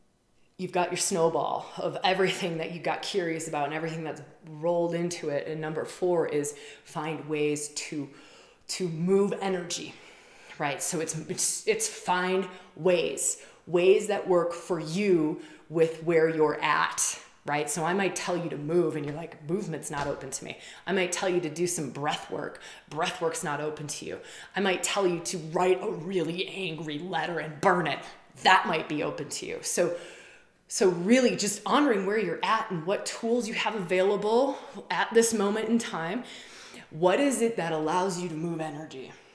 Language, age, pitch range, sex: English, 20-39, 155-190 Hz, female